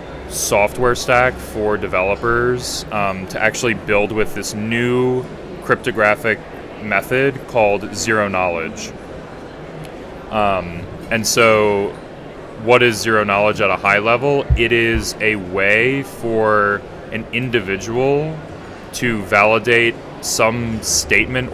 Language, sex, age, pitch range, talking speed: English, male, 30-49, 100-120 Hz, 105 wpm